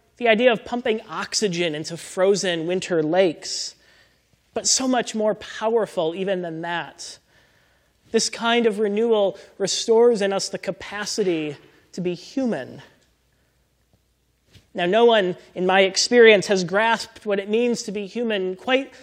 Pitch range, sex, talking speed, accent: 170-215 Hz, male, 140 wpm, American